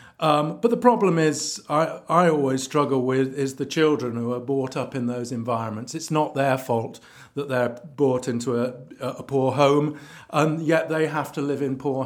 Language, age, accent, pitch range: English, 50-69, British, 125-150 Hz